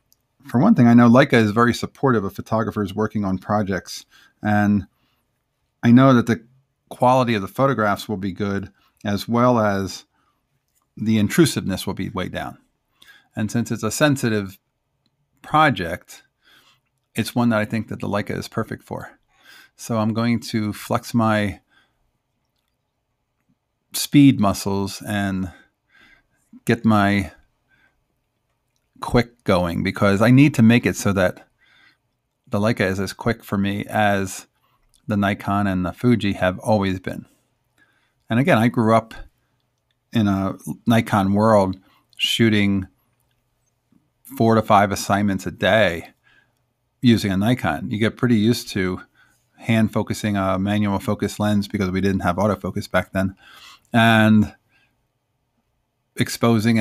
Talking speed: 135 wpm